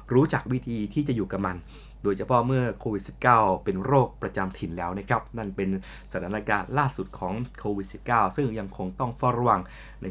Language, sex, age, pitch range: Thai, male, 20-39, 105-140 Hz